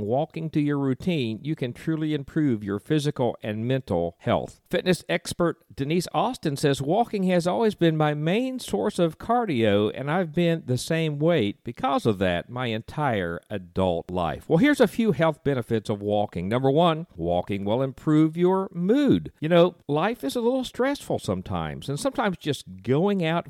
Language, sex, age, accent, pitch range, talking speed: English, male, 50-69, American, 110-165 Hz, 175 wpm